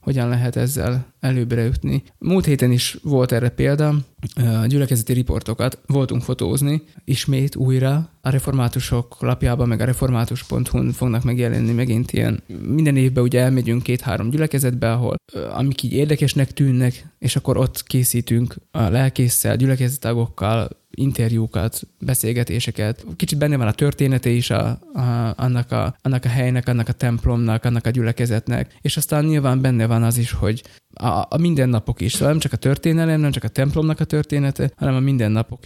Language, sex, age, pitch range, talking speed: Hungarian, male, 20-39, 115-140 Hz, 155 wpm